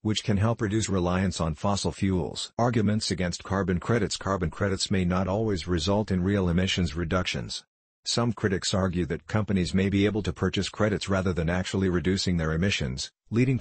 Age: 50-69